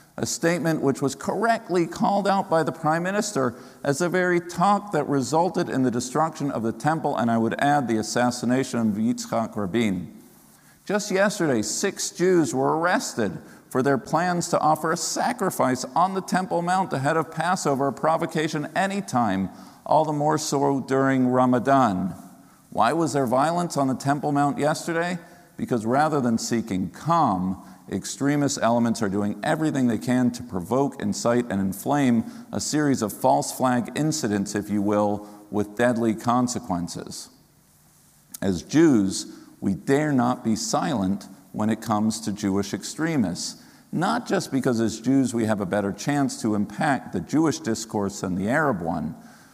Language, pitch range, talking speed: English, 115-165 Hz, 160 wpm